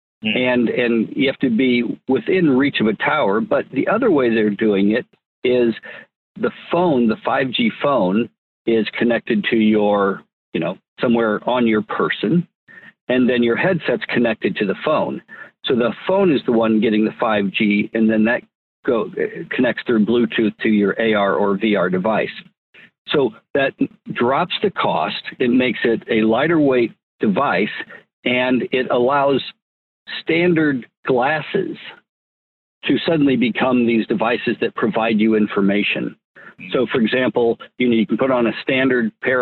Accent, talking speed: American, 155 wpm